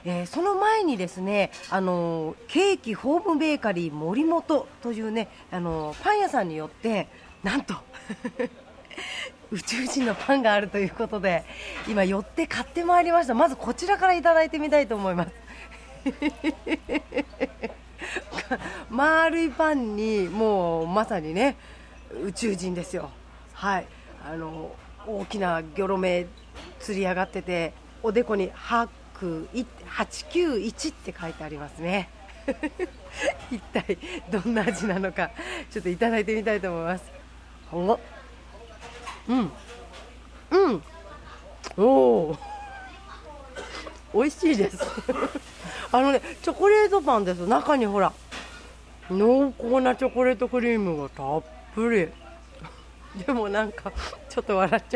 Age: 40-59